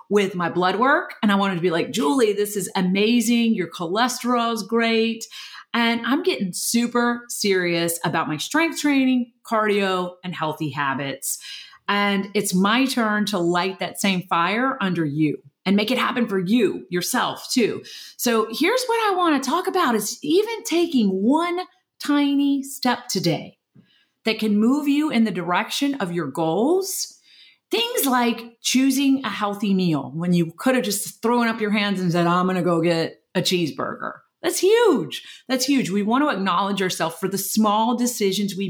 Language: English